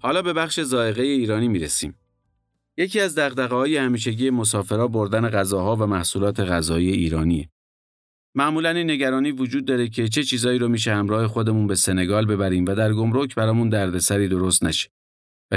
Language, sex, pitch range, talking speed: Persian, male, 95-125 Hz, 160 wpm